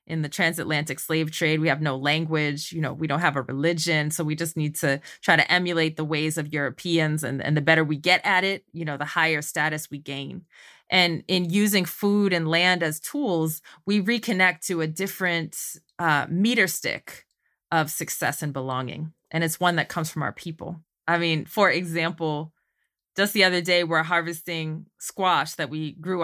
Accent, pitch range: American, 155-180 Hz